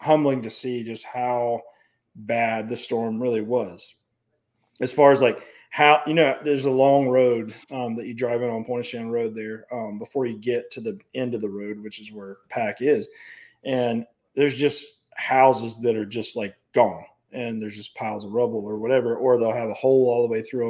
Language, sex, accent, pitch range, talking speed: English, male, American, 115-130 Hz, 210 wpm